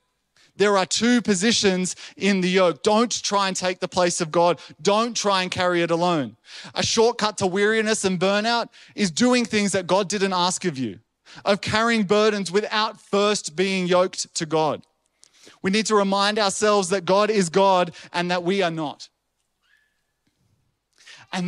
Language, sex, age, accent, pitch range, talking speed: English, male, 20-39, Australian, 155-200 Hz, 170 wpm